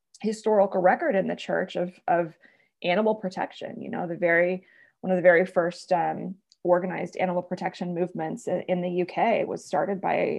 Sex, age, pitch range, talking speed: female, 20-39, 170-205 Hz, 170 wpm